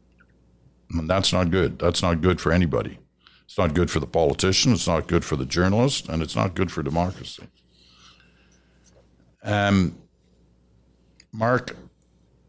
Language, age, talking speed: English, 60-79, 140 wpm